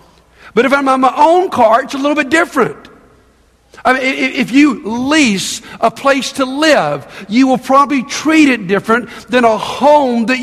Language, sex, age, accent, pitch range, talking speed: English, male, 50-69, American, 200-265 Hz, 180 wpm